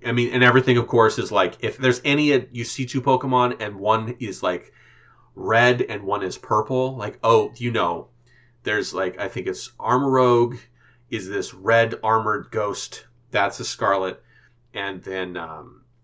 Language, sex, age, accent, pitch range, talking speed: English, male, 30-49, American, 110-130 Hz, 170 wpm